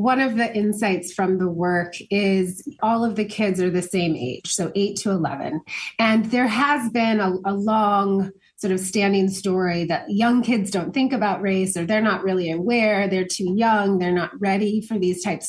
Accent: American